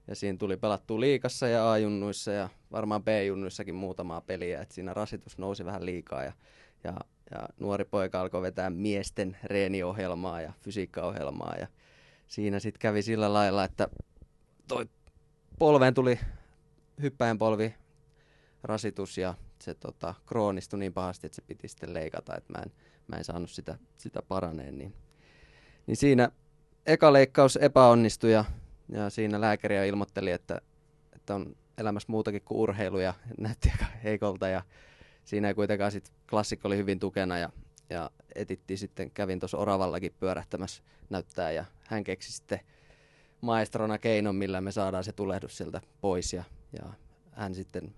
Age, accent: 20-39, native